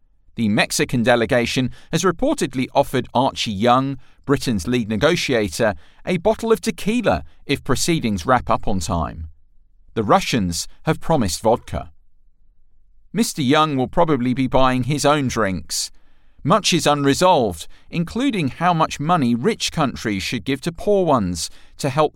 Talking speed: 140 wpm